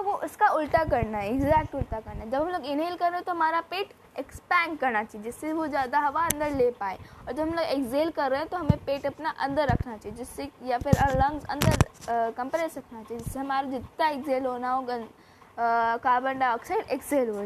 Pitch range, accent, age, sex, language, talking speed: 255-330 Hz, Indian, 20-39, female, English, 180 wpm